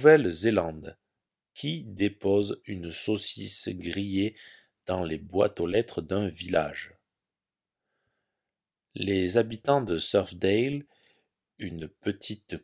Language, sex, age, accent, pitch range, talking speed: French, male, 40-59, French, 90-125 Hz, 90 wpm